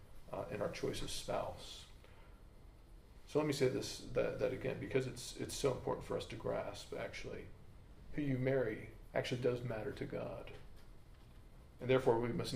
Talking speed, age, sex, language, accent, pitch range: 170 wpm, 40-59, male, English, American, 120-140 Hz